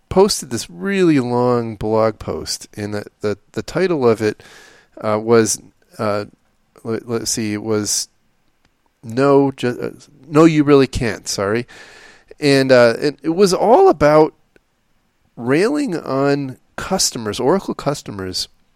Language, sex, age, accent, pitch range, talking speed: English, male, 30-49, American, 110-140 Hz, 130 wpm